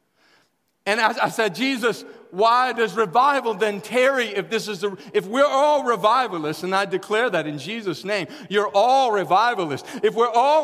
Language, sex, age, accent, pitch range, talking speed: English, male, 40-59, American, 140-225 Hz, 175 wpm